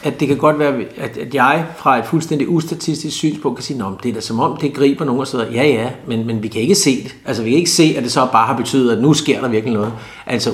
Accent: native